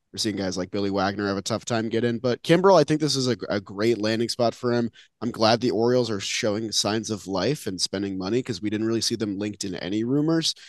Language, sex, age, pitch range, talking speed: English, male, 30-49, 100-130 Hz, 265 wpm